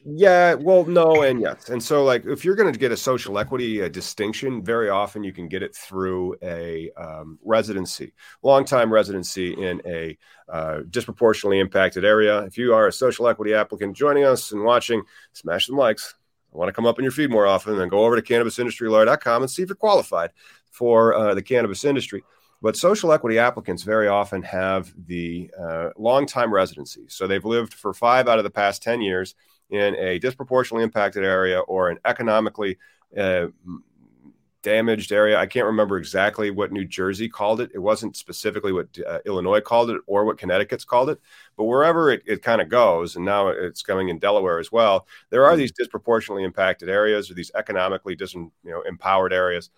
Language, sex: English, male